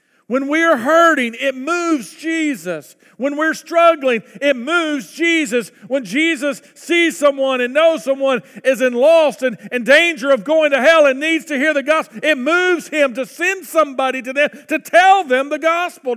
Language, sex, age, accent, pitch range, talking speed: English, male, 50-69, American, 260-325 Hz, 180 wpm